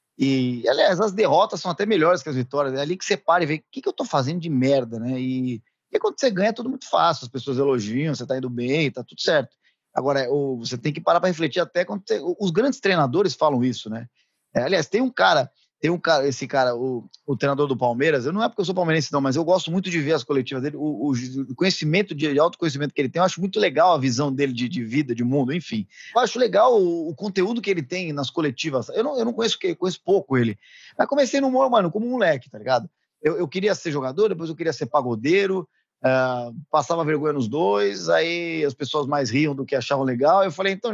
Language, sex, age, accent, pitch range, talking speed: Portuguese, male, 20-39, Brazilian, 135-195 Hz, 245 wpm